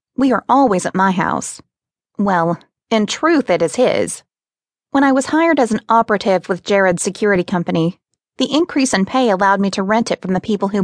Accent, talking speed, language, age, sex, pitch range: American, 200 wpm, English, 20-39, female, 185-235 Hz